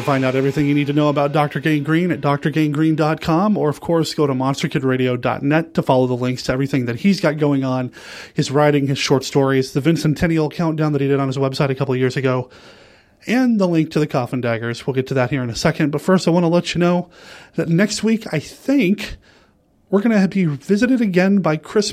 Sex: male